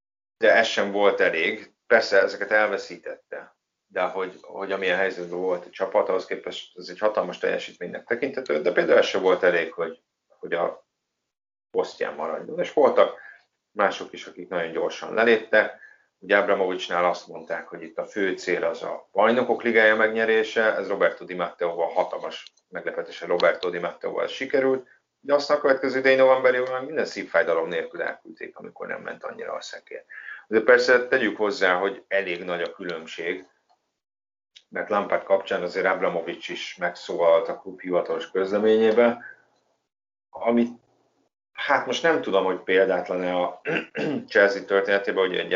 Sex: male